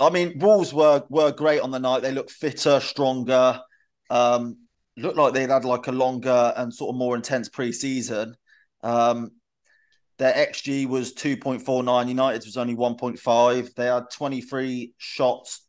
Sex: male